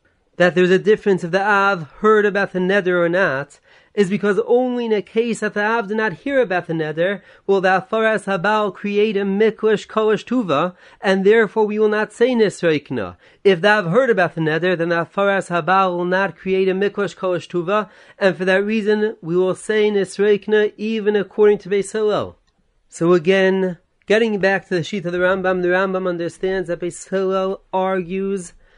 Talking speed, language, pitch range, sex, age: 185 wpm, English, 170-205 Hz, male, 30-49